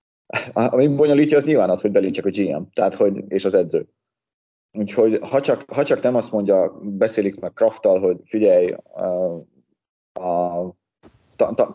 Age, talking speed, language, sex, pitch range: 30-49, 165 wpm, Hungarian, male, 90-115 Hz